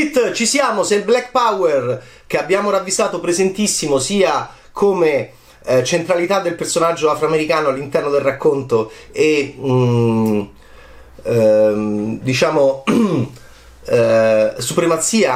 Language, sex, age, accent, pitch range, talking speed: Italian, male, 30-49, native, 115-170 Hz, 100 wpm